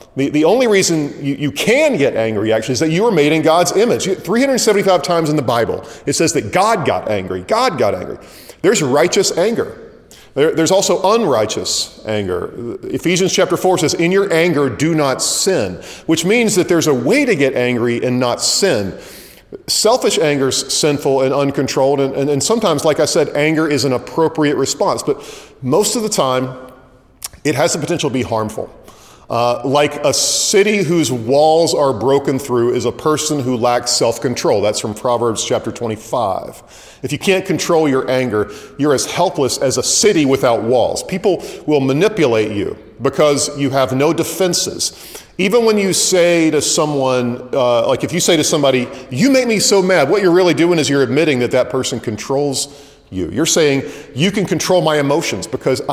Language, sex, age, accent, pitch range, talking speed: English, male, 40-59, American, 125-170 Hz, 185 wpm